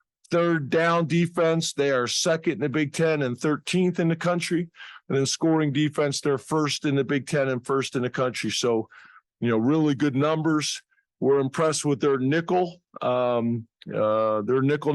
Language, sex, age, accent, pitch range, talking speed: English, male, 50-69, American, 135-165 Hz, 180 wpm